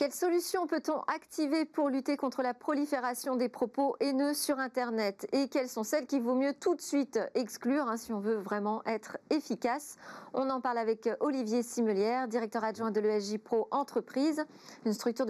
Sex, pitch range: female, 215-280 Hz